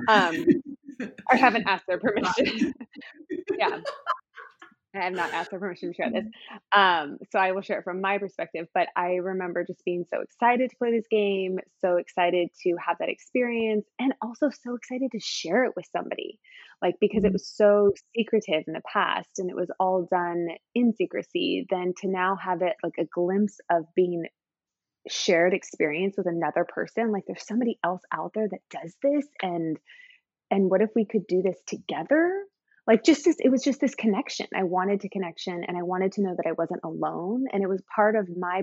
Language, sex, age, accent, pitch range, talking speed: English, female, 20-39, American, 185-245 Hz, 195 wpm